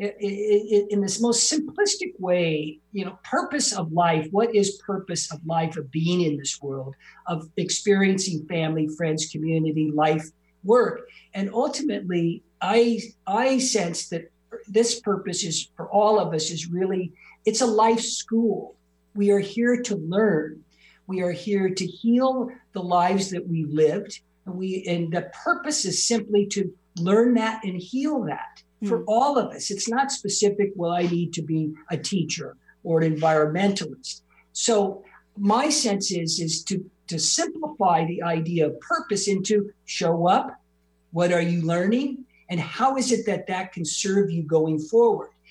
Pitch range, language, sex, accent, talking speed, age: 165-220 Hz, English, male, American, 160 wpm, 50-69